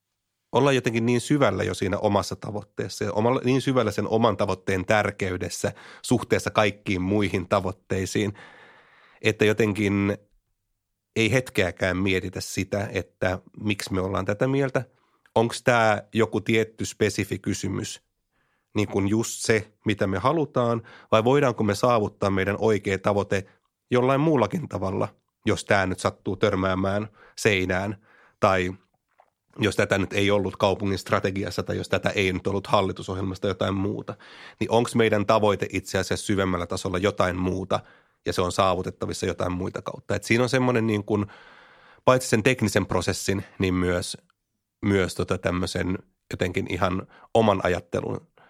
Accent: native